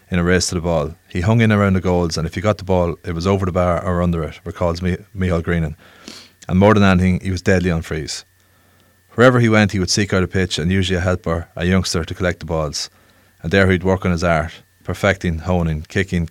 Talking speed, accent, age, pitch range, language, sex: 250 wpm, Irish, 30-49, 85-95 Hz, English, male